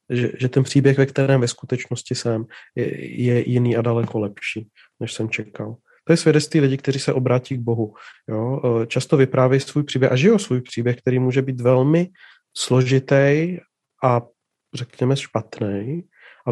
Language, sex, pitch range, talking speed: Czech, male, 120-135 Hz, 165 wpm